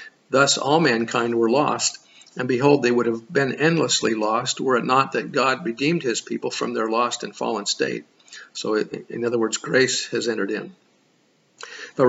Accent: American